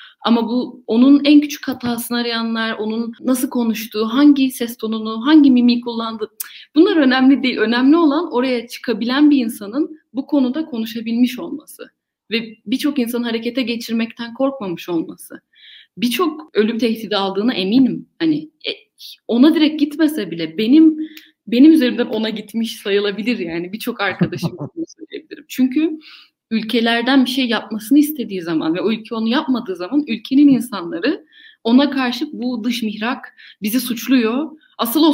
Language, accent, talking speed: Turkish, native, 140 wpm